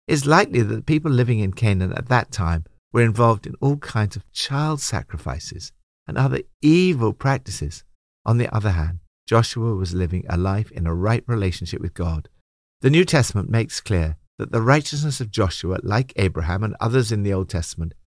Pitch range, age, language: 90-130 Hz, 60-79, English